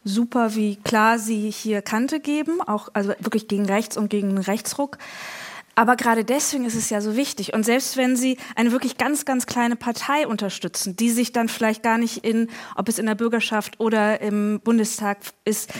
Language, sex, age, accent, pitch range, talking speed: German, female, 20-39, German, 215-255 Hz, 190 wpm